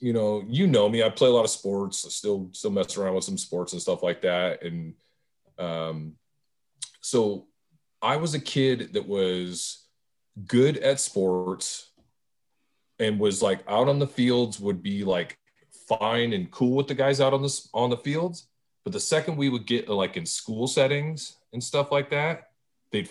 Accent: American